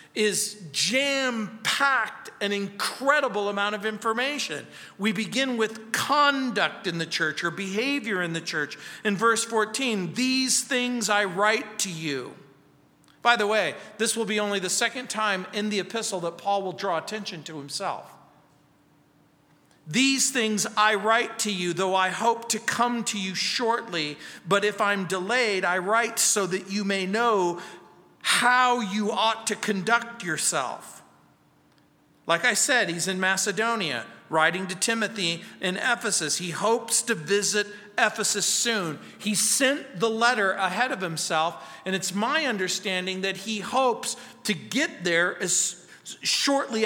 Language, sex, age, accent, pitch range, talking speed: English, male, 50-69, American, 180-230 Hz, 145 wpm